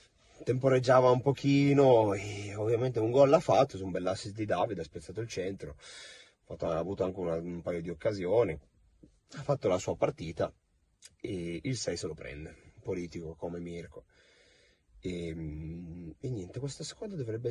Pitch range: 85-120 Hz